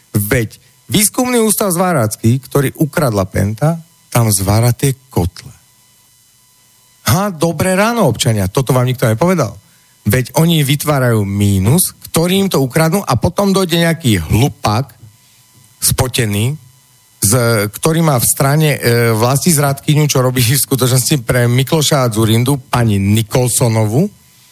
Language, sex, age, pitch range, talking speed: Slovak, male, 40-59, 110-145 Hz, 120 wpm